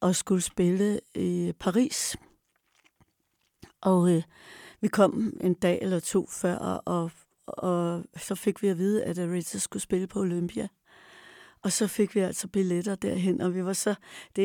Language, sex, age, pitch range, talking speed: Danish, female, 60-79, 190-225 Hz, 160 wpm